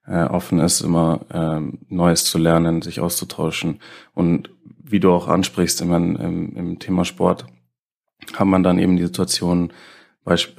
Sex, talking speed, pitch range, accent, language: male, 155 wpm, 85-95 Hz, German, German